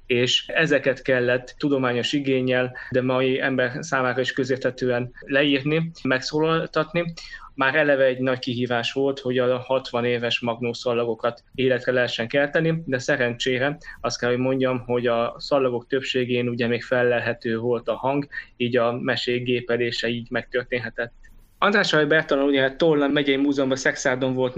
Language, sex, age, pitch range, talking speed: Hungarian, male, 20-39, 125-140 Hz, 140 wpm